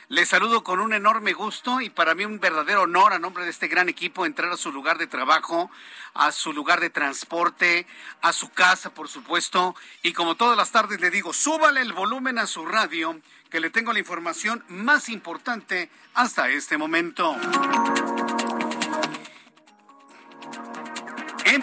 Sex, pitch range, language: male, 165-220 Hz, Spanish